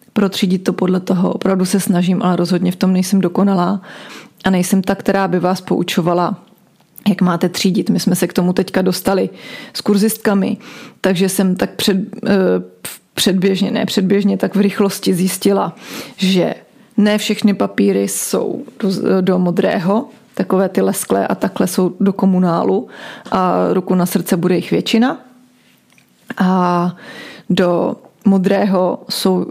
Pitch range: 185-210 Hz